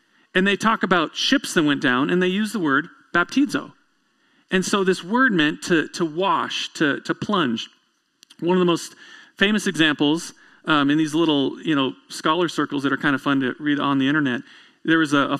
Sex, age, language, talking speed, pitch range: male, 40-59, English, 205 wpm, 155-245 Hz